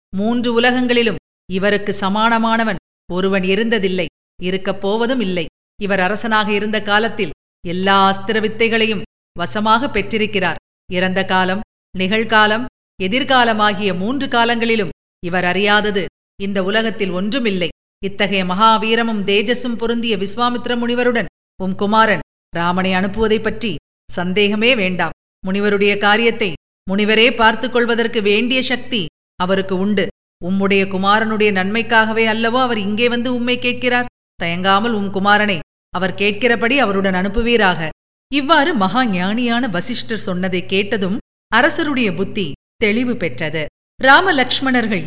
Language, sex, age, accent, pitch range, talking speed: Tamil, female, 50-69, native, 190-235 Hz, 100 wpm